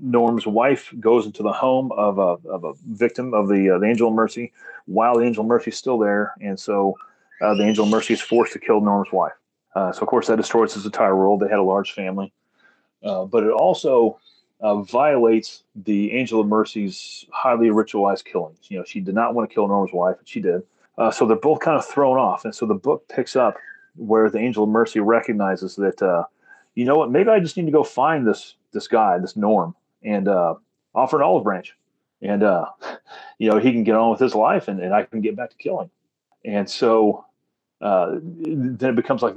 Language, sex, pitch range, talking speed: English, male, 100-120 Hz, 225 wpm